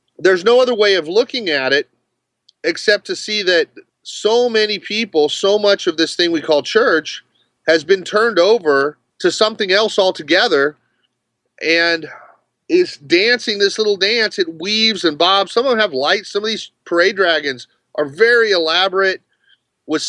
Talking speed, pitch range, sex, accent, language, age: 165 wpm, 155-210 Hz, male, American, English, 30-49